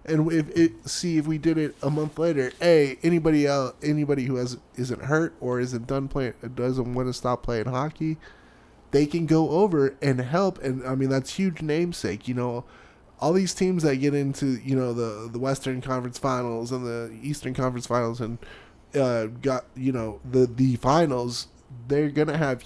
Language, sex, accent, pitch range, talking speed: English, male, American, 125-155 Hz, 190 wpm